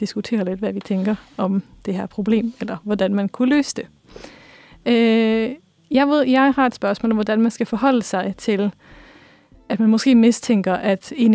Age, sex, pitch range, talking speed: 30-49, female, 205-255 Hz, 180 wpm